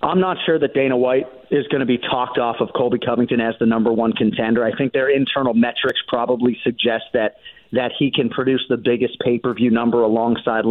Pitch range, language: 120-145 Hz, English